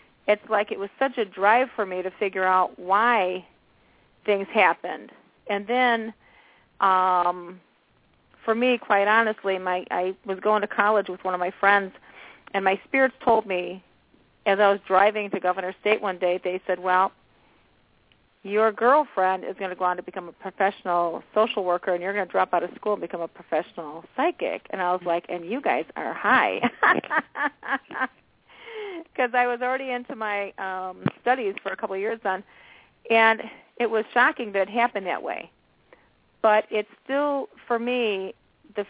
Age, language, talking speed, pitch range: 40-59, English, 175 wpm, 185-225 Hz